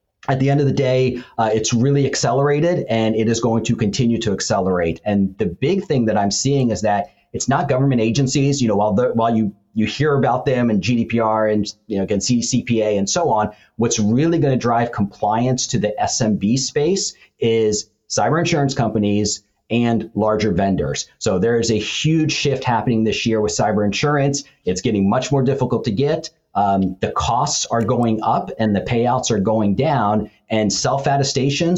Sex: male